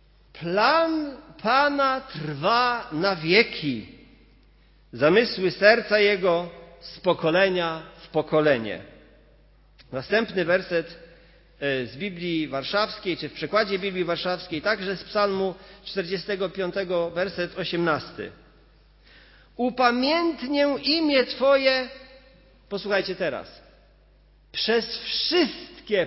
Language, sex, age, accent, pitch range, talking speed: Polish, male, 50-69, native, 175-240 Hz, 80 wpm